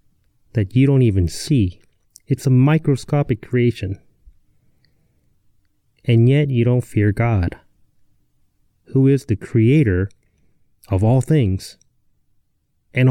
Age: 30-49